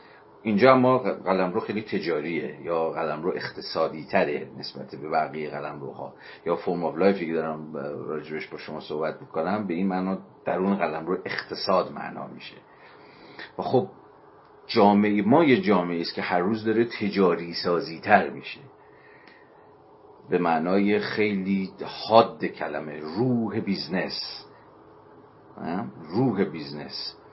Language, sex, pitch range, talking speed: Persian, male, 85-105 Hz, 130 wpm